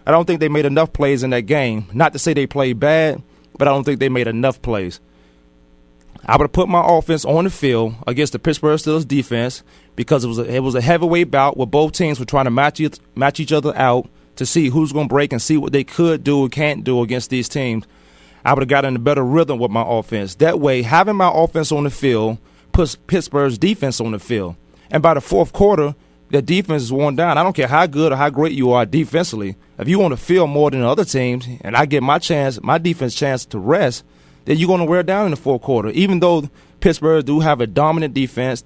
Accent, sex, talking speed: American, male, 240 wpm